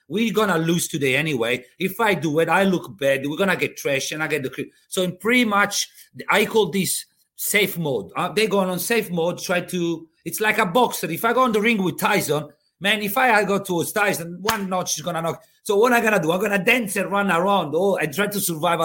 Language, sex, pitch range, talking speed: English, male, 150-210 Hz, 240 wpm